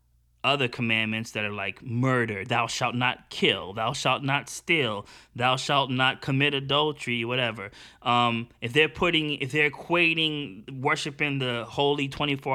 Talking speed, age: 150 wpm, 20-39